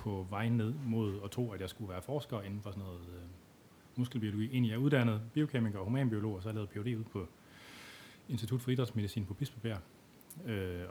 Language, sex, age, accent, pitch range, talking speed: Danish, male, 30-49, native, 95-115 Hz, 200 wpm